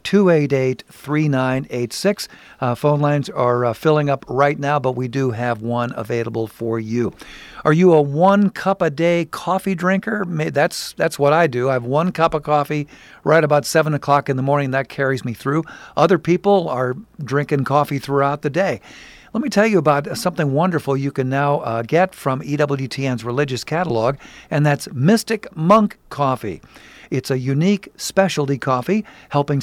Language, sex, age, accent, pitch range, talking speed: English, male, 50-69, American, 135-165 Hz, 160 wpm